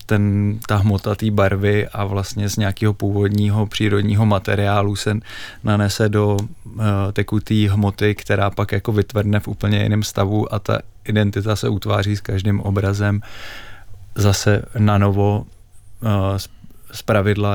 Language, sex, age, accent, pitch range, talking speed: Czech, male, 20-39, native, 100-110 Hz, 130 wpm